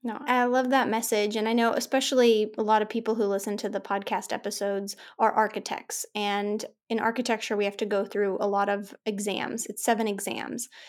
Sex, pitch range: female, 210-240 Hz